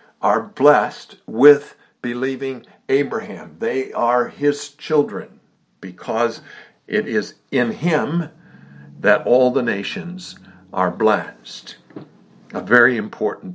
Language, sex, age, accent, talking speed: English, male, 60-79, American, 100 wpm